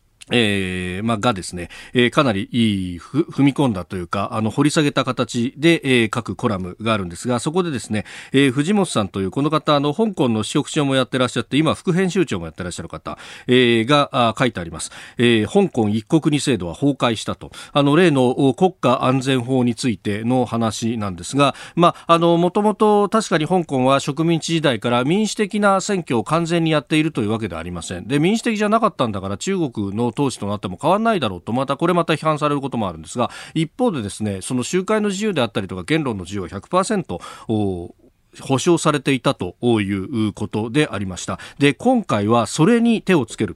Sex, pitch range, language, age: male, 105-160 Hz, Japanese, 40-59